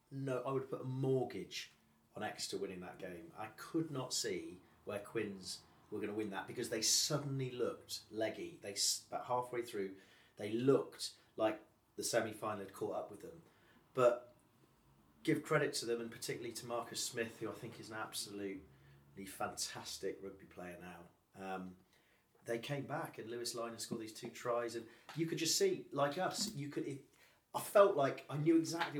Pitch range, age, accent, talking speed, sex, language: 110-140 Hz, 30-49, British, 180 wpm, male, English